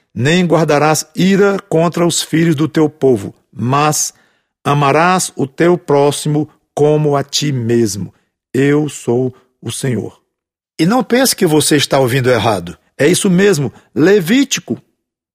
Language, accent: English, Brazilian